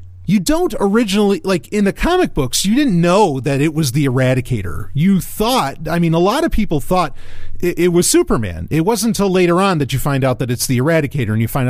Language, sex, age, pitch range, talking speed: English, male, 40-59, 120-170 Hz, 230 wpm